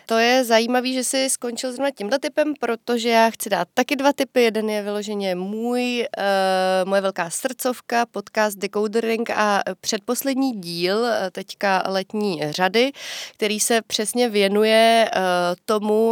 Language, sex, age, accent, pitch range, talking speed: Czech, female, 30-49, native, 190-215 Hz, 135 wpm